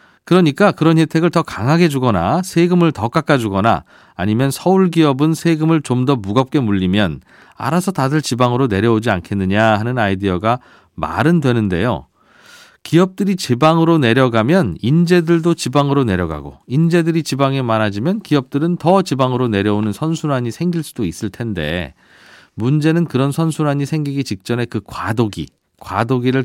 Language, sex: Korean, male